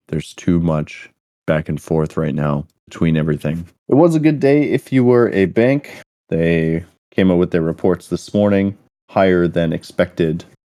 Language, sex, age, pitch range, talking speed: English, male, 20-39, 75-90 Hz, 175 wpm